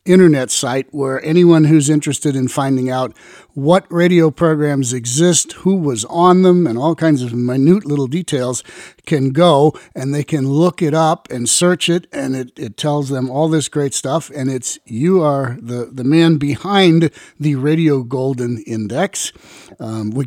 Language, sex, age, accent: English, male, 50-69, American